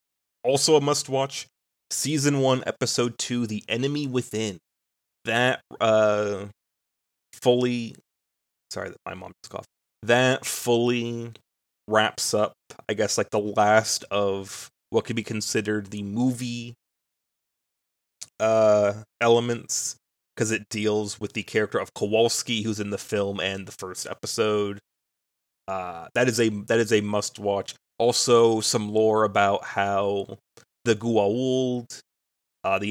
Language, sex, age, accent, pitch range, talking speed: English, male, 30-49, American, 100-120 Hz, 130 wpm